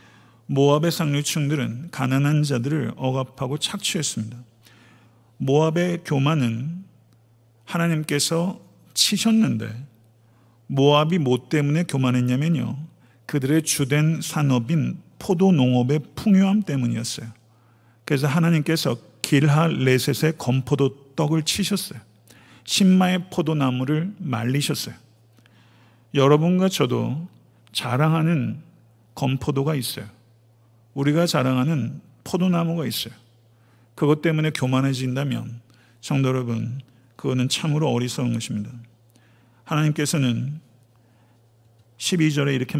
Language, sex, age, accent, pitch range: Korean, male, 50-69, native, 120-155 Hz